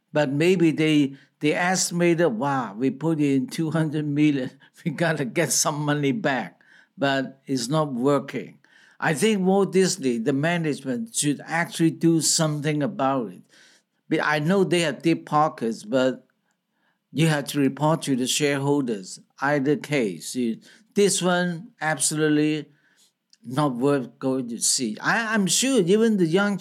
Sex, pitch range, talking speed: male, 145-185 Hz, 145 wpm